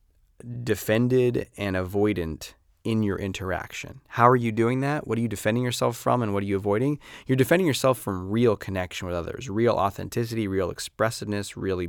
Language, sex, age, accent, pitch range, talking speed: English, male, 30-49, American, 95-130 Hz, 175 wpm